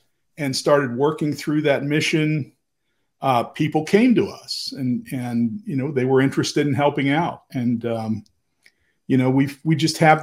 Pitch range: 120-145 Hz